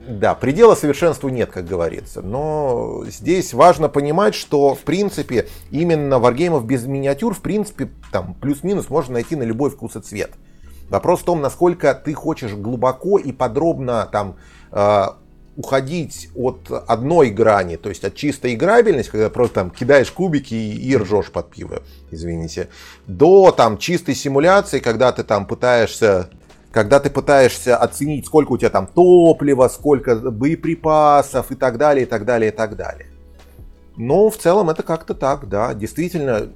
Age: 30-49